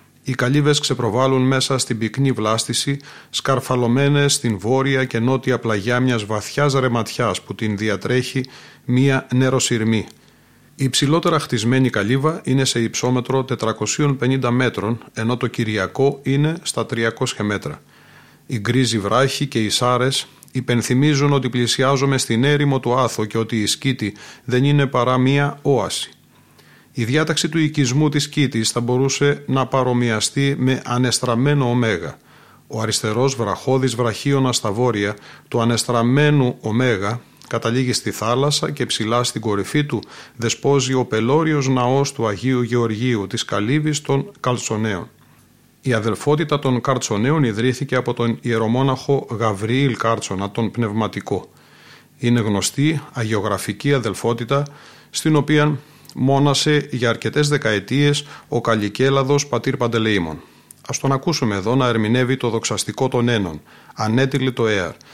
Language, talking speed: Greek, 130 wpm